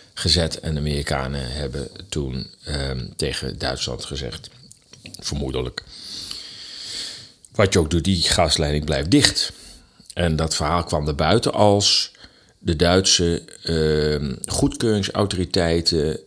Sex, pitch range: male, 75-90 Hz